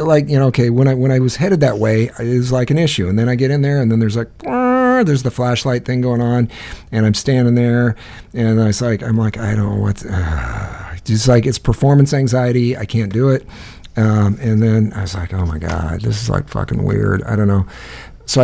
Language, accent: English, American